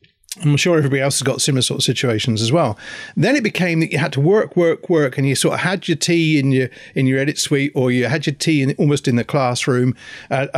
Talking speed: 260 wpm